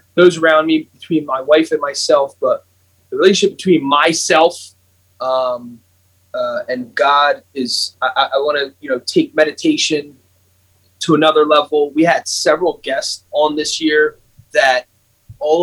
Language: English